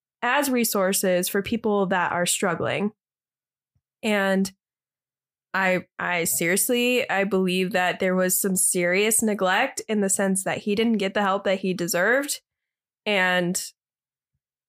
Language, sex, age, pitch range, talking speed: English, female, 20-39, 180-225 Hz, 130 wpm